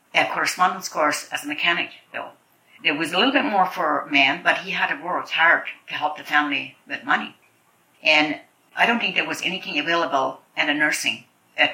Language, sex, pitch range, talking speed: English, female, 140-170 Hz, 205 wpm